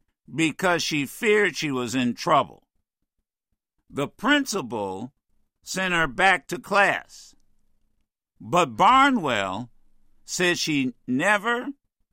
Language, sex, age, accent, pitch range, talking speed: English, male, 60-79, American, 125-185 Hz, 95 wpm